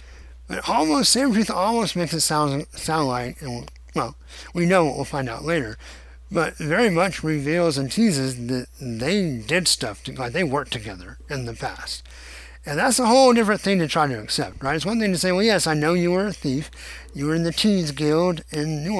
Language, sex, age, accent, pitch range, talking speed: English, male, 50-69, American, 125-175 Hz, 215 wpm